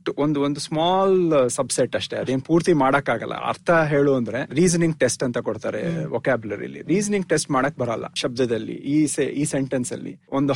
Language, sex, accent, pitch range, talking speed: Kannada, male, native, 130-155 Hz, 140 wpm